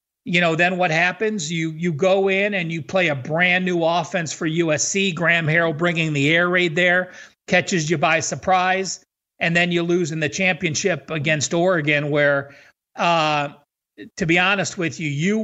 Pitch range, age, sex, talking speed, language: 150-185 Hz, 50-69, male, 180 wpm, English